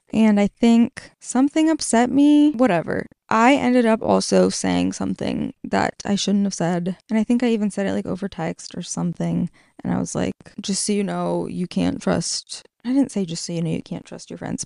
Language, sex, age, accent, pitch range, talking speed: English, female, 20-39, American, 195-230 Hz, 215 wpm